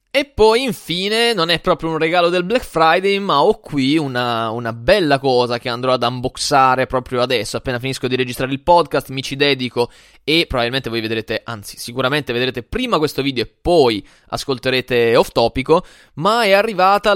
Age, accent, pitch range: 20-39, native, 120-170 Hz